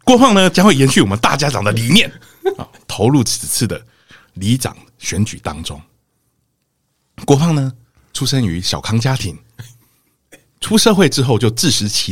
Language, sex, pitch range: Chinese, male, 110-155 Hz